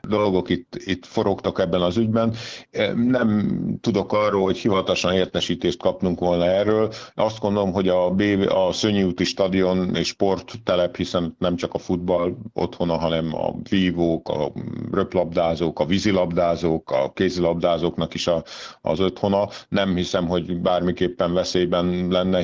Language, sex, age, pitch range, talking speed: Hungarian, male, 50-69, 90-100 Hz, 140 wpm